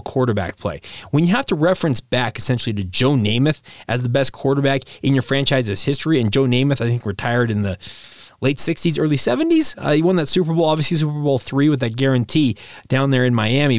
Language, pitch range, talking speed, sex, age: English, 125-160 Hz, 215 wpm, male, 30-49